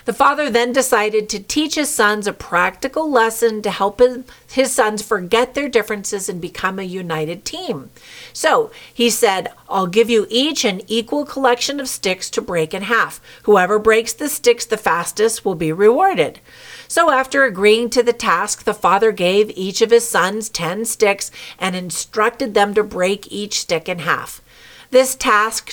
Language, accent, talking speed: English, American, 175 wpm